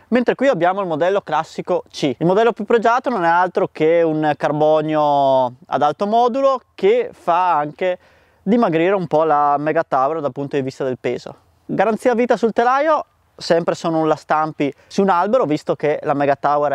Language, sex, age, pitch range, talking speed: Italian, male, 20-39, 150-200 Hz, 185 wpm